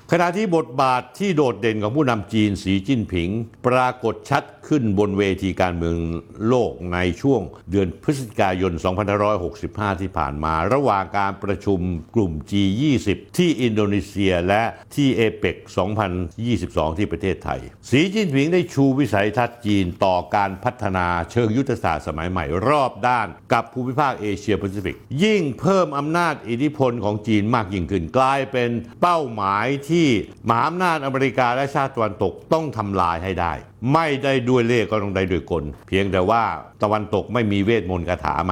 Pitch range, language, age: 100-140 Hz, Thai, 60-79